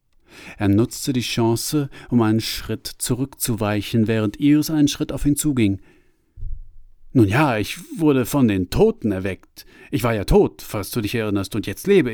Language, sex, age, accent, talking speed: German, male, 50-69, German, 170 wpm